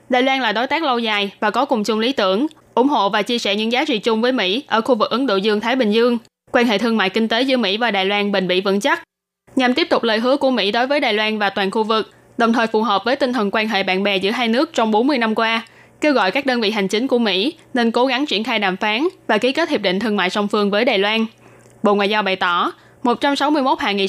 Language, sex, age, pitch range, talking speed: Vietnamese, female, 10-29, 205-260 Hz, 290 wpm